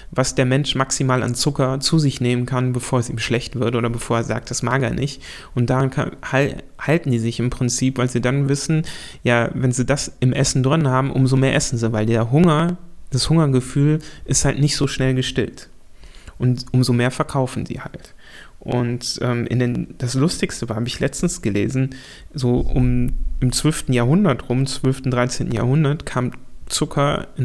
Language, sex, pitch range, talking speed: German, male, 125-140 Hz, 190 wpm